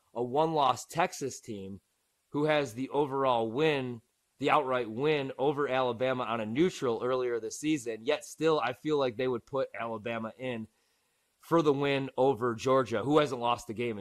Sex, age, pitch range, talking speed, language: male, 20-39, 120-150 Hz, 170 wpm, English